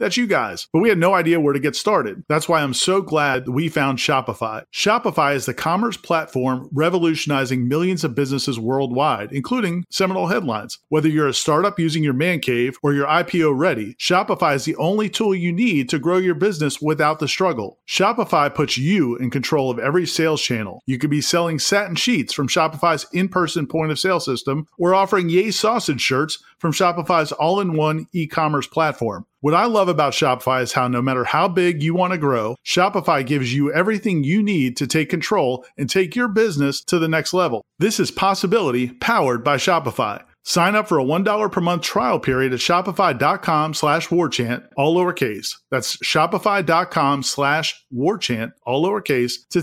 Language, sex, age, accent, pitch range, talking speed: English, male, 40-59, American, 140-180 Hz, 185 wpm